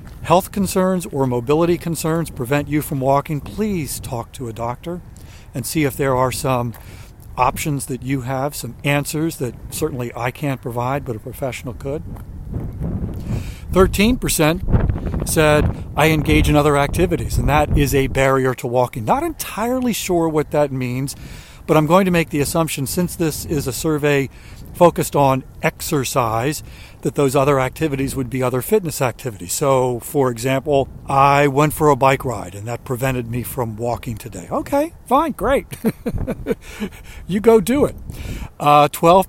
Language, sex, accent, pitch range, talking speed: English, male, American, 120-155 Hz, 160 wpm